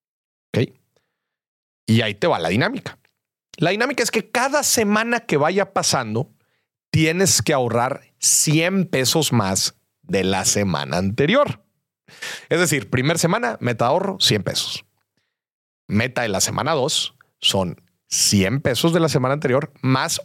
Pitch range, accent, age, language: 130-210 Hz, Mexican, 40-59, Spanish